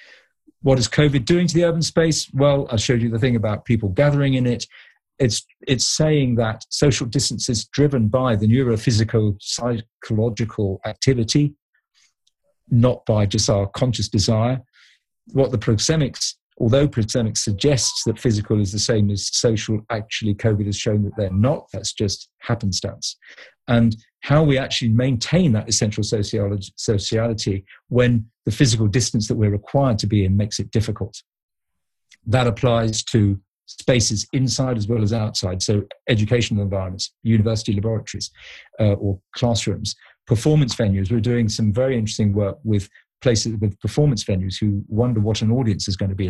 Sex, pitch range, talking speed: male, 105-125 Hz, 155 wpm